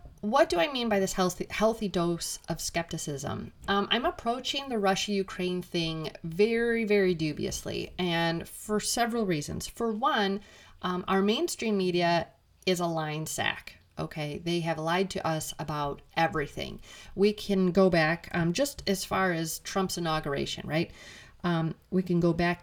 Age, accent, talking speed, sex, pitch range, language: 30-49, American, 155 wpm, female, 165-205 Hz, English